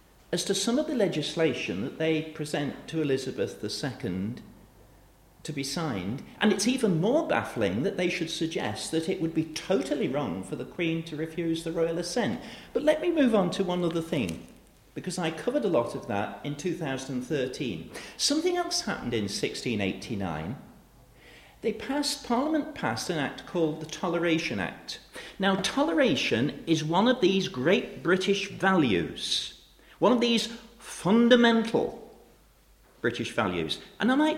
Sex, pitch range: male, 150-225 Hz